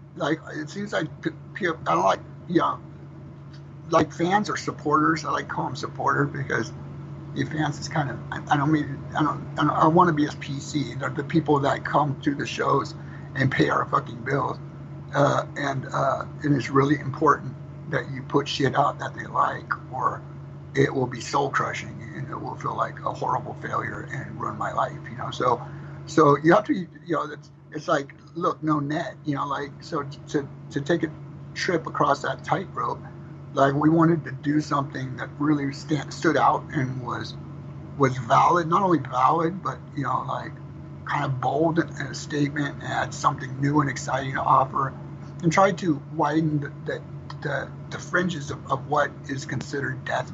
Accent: American